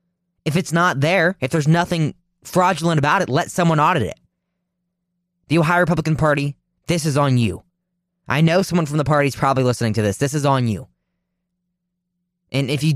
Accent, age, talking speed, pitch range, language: American, 20-39, 185 wpm, 125-170 Hz, English